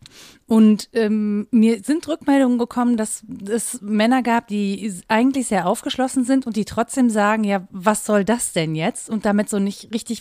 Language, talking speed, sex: German, 175 wpm, female